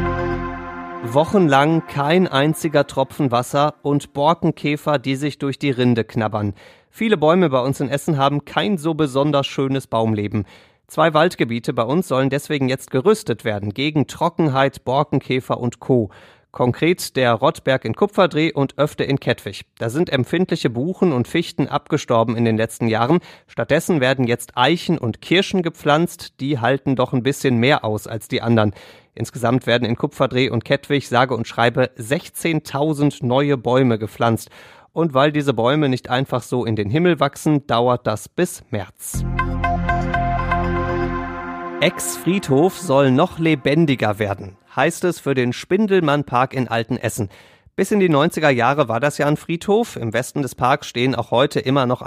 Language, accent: German, German